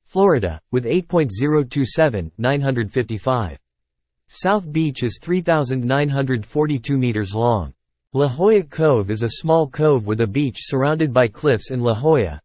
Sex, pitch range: male, 110-150 Hz